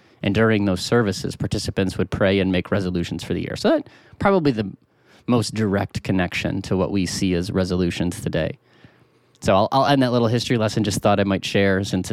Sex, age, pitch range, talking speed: male, 30-49, 95-120 Hz, 205 wpm